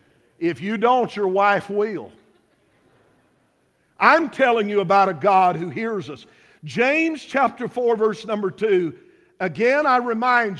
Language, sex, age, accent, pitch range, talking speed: English, male, 50-69, American, 130-210 Hz, 135 wpm